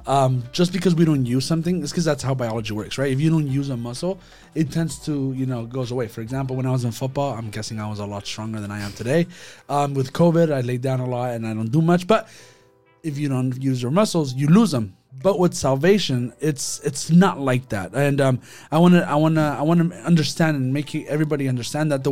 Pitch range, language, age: 125-160 Hz, English, 30-49